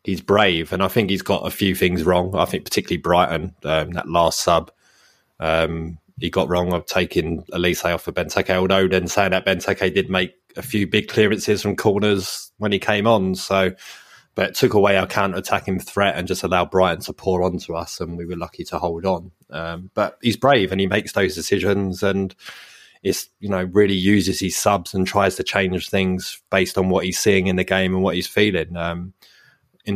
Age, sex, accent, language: 20-39, male, British, English